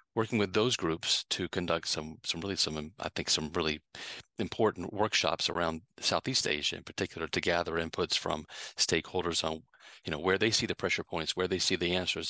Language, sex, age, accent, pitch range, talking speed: English, male, 40-59, American, 80-95 Hz, 195 wpm